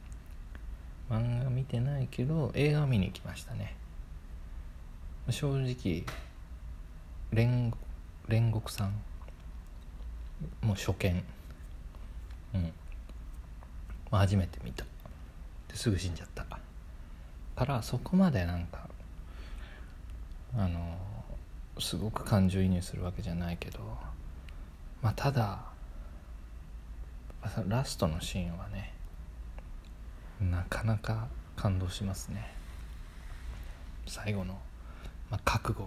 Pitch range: 75-105 Hz